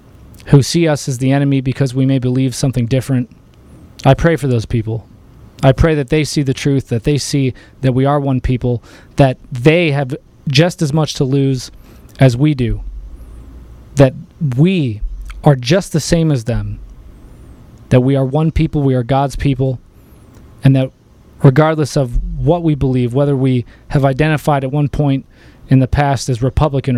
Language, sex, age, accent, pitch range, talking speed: English, male, 20-39, American, 125-150 Hz, 175 wpm